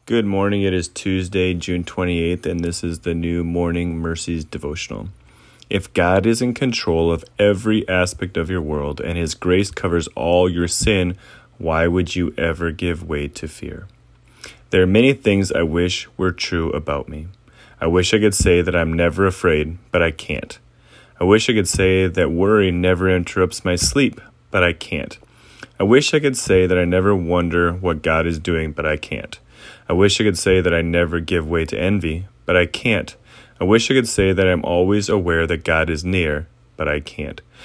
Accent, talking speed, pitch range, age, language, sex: American, 200 wpm, 85-105 Hz, 30-49, English, male